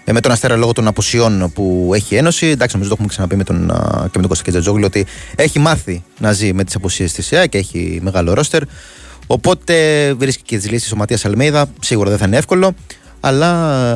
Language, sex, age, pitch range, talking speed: Greek, male, 30-49, 95-120 Hz, 205 wpm